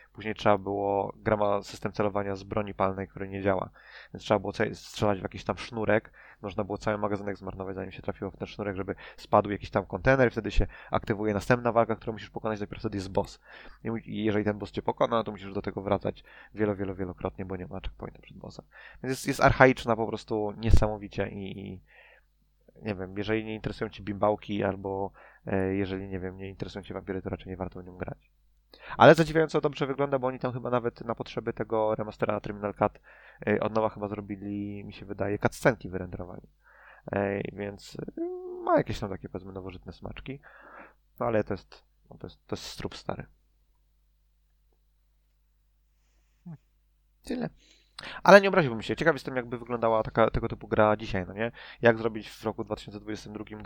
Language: Polish